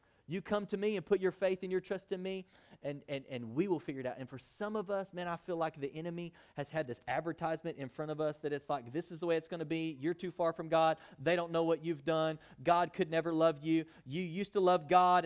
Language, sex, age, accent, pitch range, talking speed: English, male, 30-49, American, 140-180 Hz, 285 wpm